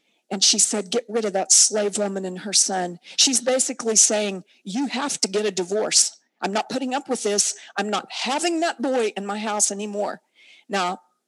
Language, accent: English, American